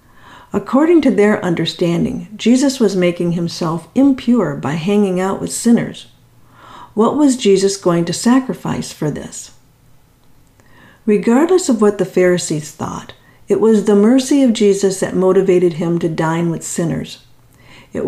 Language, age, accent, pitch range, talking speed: English, 50-69, American, 175-220 Hz, 140 wpm